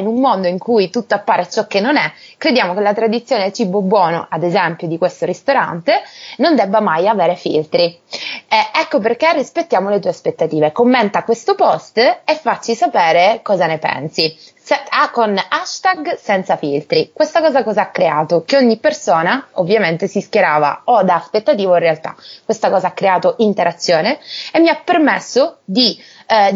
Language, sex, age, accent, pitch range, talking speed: Italian, female, 20-39, native, 180-275 Hz, 175 wpm